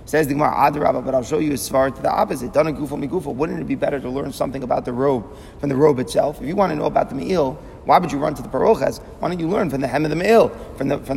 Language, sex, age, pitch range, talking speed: English, male, 30-49, 140-160 Hz, 290 wpm